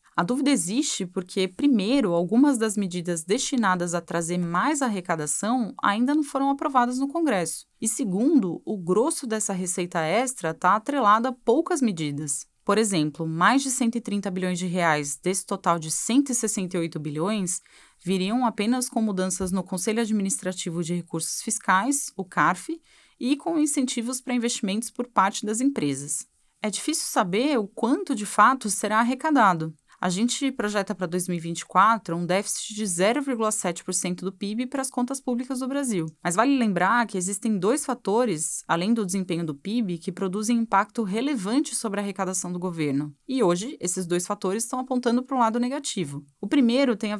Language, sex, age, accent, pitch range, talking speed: Portuguese, female, 20-39, Brazilian, 180-250 Hz, 160 wpm